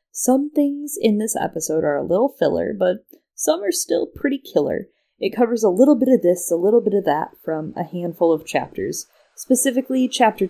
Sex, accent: female, American